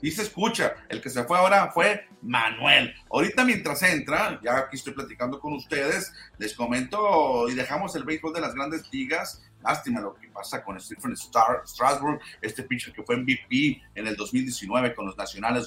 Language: Spanish